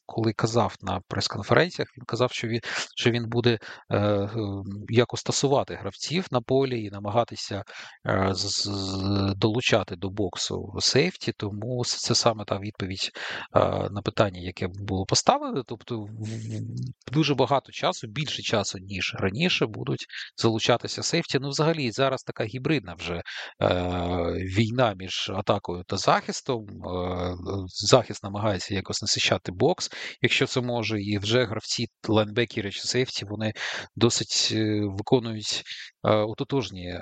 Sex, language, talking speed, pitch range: male, Ukrainian, 120 wpm, 100-125 Hz